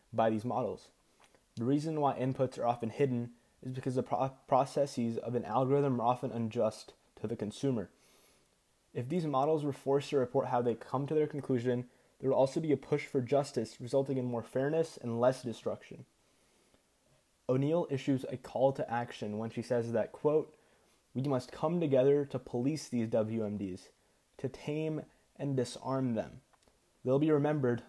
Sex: male